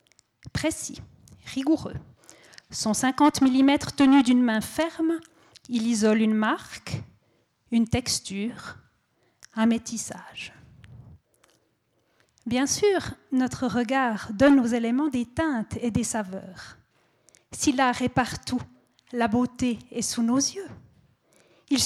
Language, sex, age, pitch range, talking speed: French, female, 40-59, 230-290 Hz, 110 wpm